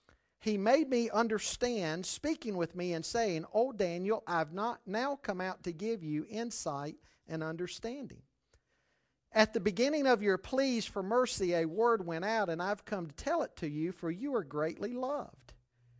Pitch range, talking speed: 165-225 Hz, 185 wpm